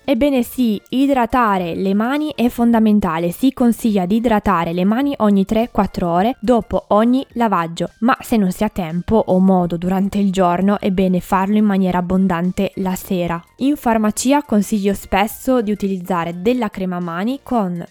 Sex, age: female, 20-39